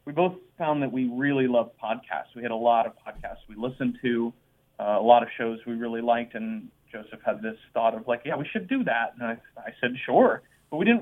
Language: English